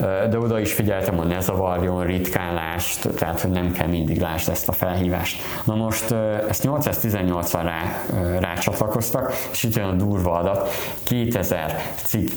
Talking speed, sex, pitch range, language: 150 wpm, male, 90-115 Hz, Hungarian